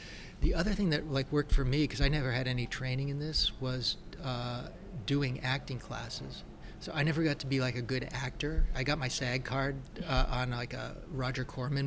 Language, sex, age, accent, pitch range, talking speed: English, male, 30-49, American, 125-140 Hz, 210 wpm